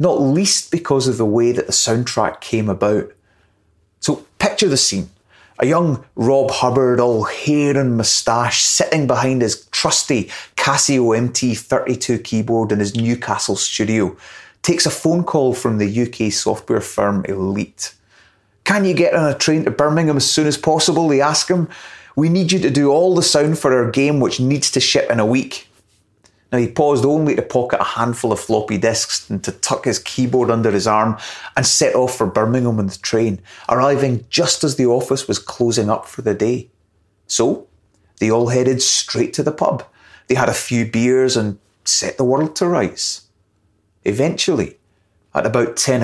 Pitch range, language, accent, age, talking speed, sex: 105-135 Hz, English, British, 30-49, 180 wpm, male